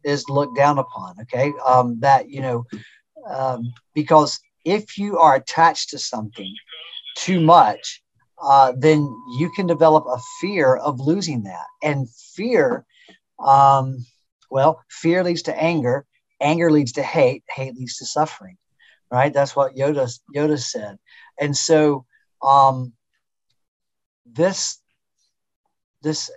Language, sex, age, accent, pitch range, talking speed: English, male, 50-69, American, 125-160 Hz, 125 wpm